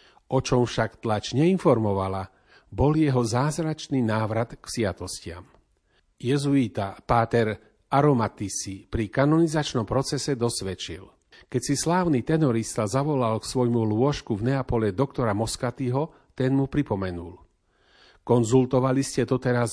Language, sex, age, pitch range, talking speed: Slovak, male, 40-59, 105-135 Hz, 115 wpm